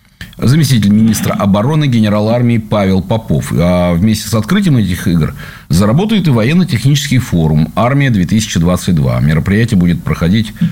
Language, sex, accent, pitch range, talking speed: Russian, male, native, 105-140 Hz, 110 wpm